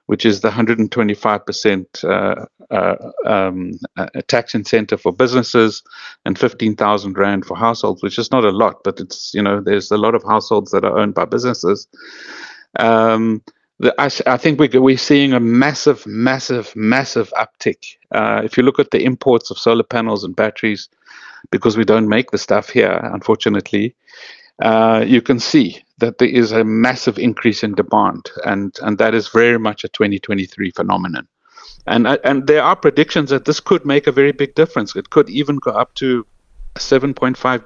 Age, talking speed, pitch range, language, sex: 50-69, 175 wpm, 110-130 Hz, English, male